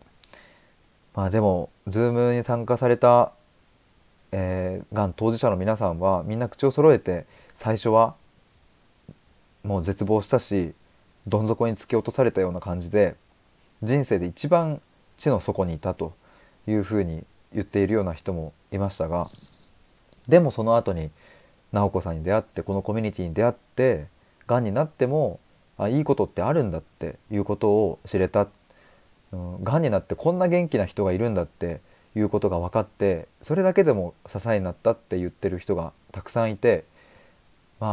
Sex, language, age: male, Japanese, 20-39